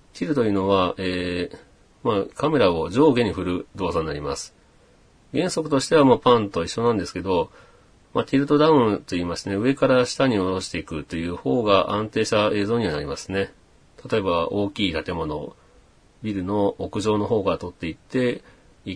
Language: Japanese